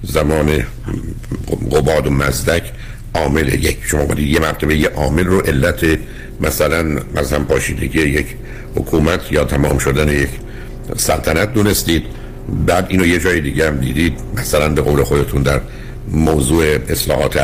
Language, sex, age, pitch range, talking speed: Persian, male, 60-79, 75-95 Hz, 135 wpm